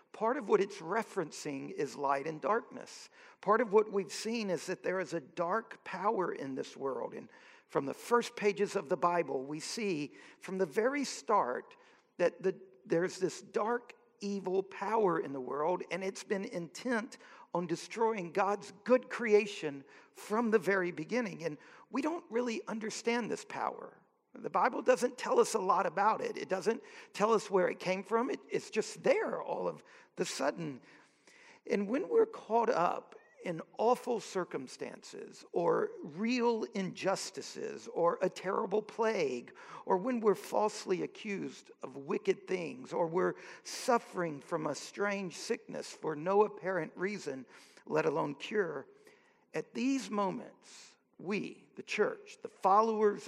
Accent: American